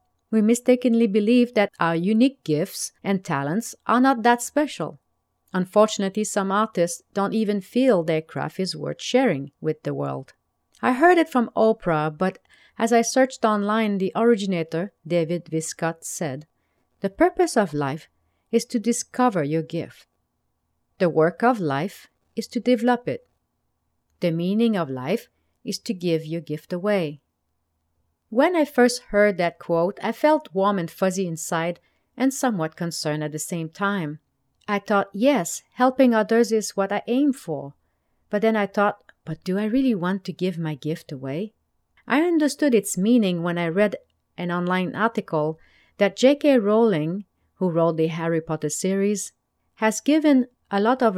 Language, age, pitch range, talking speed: English, 40-59, 165-230 Hz, 160 wpm